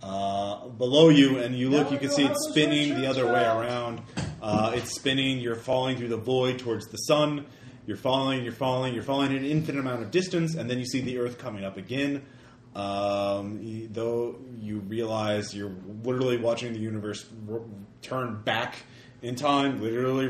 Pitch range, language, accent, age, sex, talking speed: 115-140 Hz, English, American, 30-49, male, 185 wpm